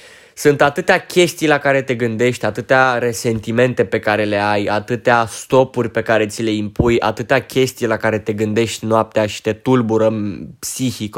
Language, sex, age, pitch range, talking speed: Romanian, male, 20-39, 110-150 Hz, 165 wpm